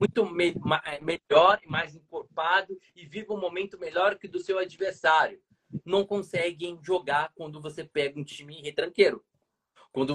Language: Portuguese